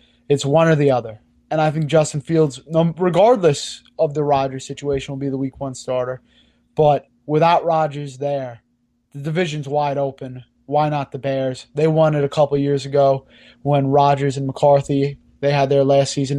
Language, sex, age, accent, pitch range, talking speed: English, male, 20-39, American, 130-150 Hz, 180 wpm